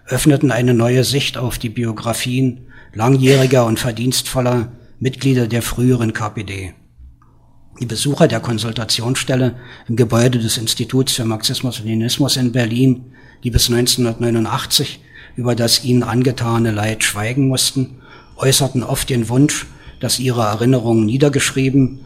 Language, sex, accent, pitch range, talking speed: German, male, German, 115-130 Hz, 125 wpm